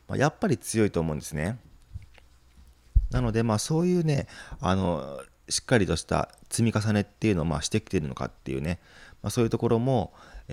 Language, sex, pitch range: Japanese, male, 75-110 Hz